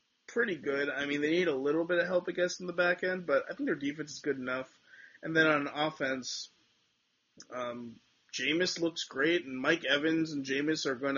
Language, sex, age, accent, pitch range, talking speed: English, male, 30-49, American, 125-160 Hz, 215 wpm